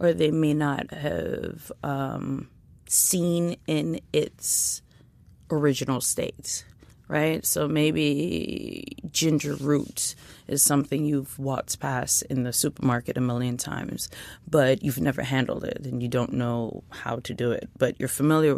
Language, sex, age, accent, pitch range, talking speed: English, female, 30-49, American, 130-155 Hz, 140 wpm